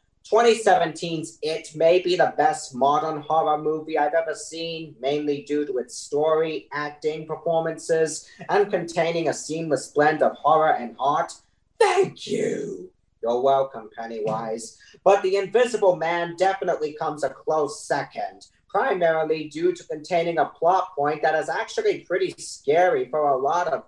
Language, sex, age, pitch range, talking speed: English, male, 40-59, 150-180 Hz, 145 wpm